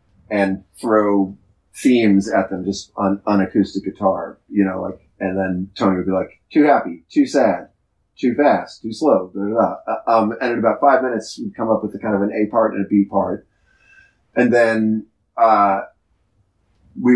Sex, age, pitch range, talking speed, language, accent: male, 30-49, 100-120 Hz, 190 wpm, English, American